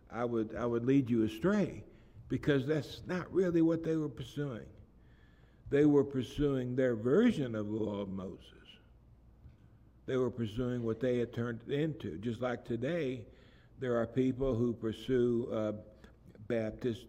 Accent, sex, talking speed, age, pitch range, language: American, male, 150 wpm, 60-79, 105-130 Hz, English